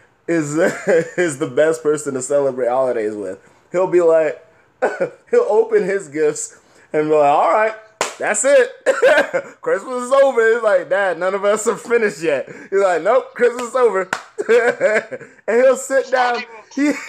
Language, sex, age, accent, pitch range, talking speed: English, male, 20-39, American, 185-300 Hz, 160 wpm